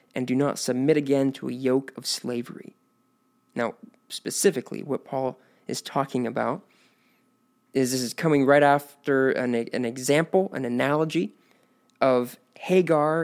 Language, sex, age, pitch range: English, male, 20-39, 125-155 Hz